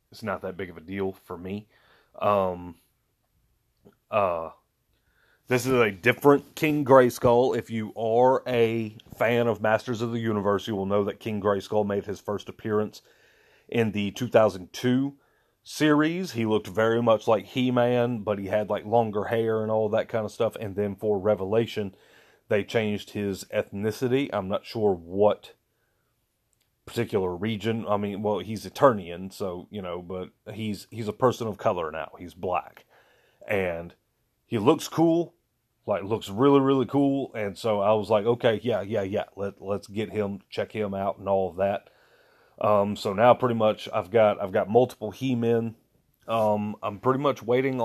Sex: male